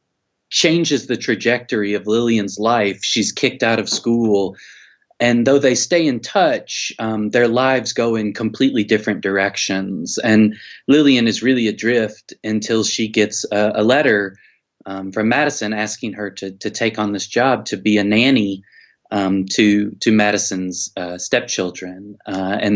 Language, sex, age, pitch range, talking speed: English, male, 30-49, 100-115 Hz, 155 wpm